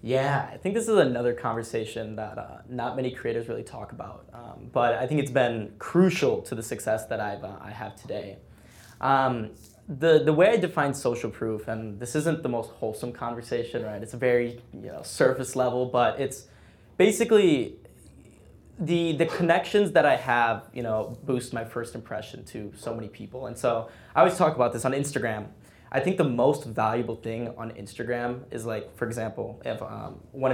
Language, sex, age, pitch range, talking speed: English, male, 10-29, 115-135 Hz, 190 wpm